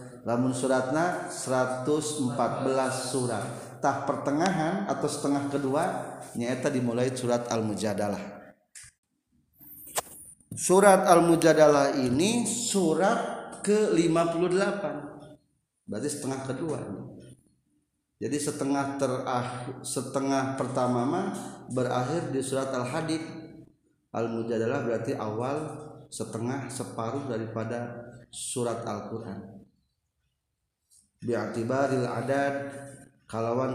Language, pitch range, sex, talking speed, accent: Indonesian, 120-155 Hz, male, 75 wpm, native